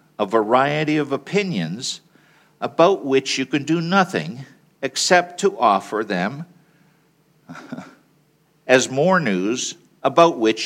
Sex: male